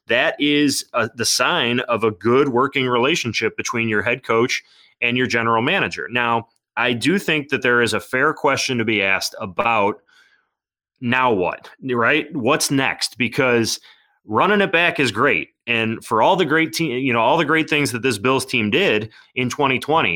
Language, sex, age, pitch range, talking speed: English, male, 30-49, 110-130 Hz, 185 wpm